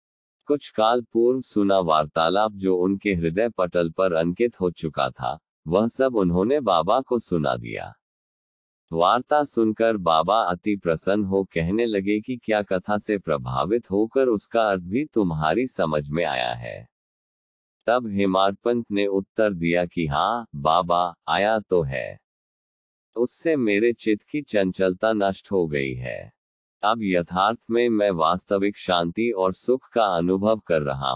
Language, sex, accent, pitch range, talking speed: Hindi, male, native, 85-115 Hz, 145 wpm